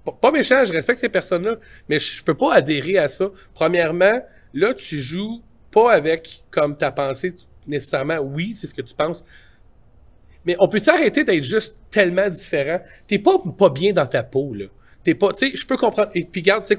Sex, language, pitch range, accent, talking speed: male, French, 150-220 Hz, Canadian, 200 wpm